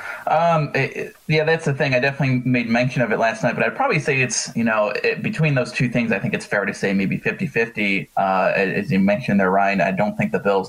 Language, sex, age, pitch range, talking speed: English, male, 20-39, 105-135 Hz, 255 wpm